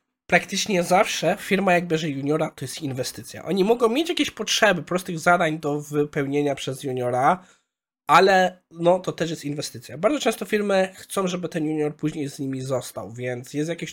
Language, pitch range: Polish, 135-180 Hz